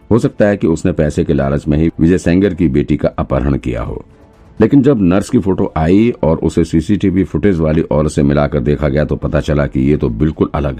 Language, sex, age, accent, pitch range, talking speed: Hindi, male, 50-69, native, 75-90 Hz, 235 wpm